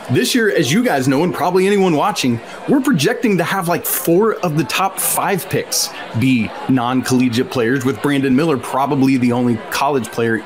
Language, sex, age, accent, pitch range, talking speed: English, male, 30-49, American, 125-175 Hz, 185 wpm